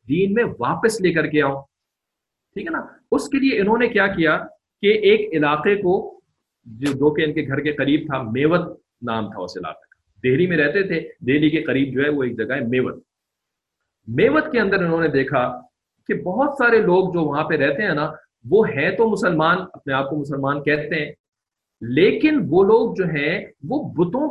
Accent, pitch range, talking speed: Indian, 145-225 Hz, 175 wpm